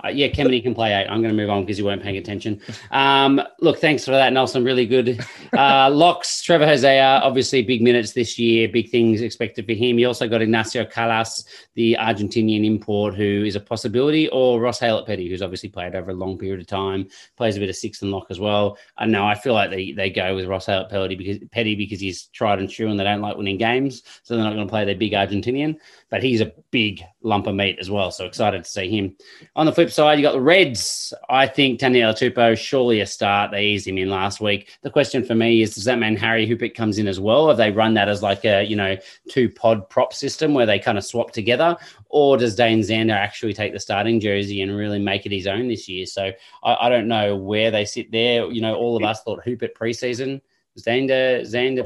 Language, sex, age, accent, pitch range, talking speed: English, male, 30-49, Australian, 100-125 Hz, 240 wpm